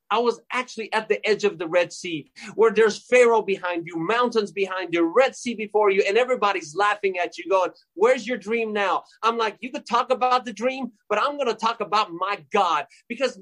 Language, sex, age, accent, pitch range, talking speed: English, male, 30-49, American, 195-245 Hz, 220 wpm